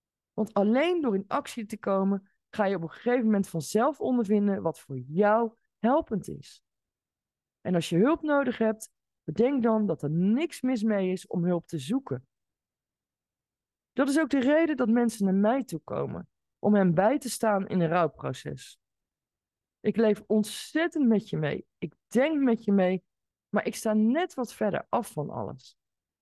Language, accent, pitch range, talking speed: Dutch, Dutch, 170-240 Hz, 175 wpm